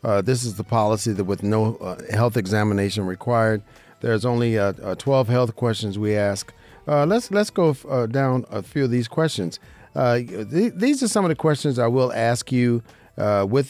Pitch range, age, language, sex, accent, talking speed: 115-165 Hz, 50-69, English, male, American, 205 wpm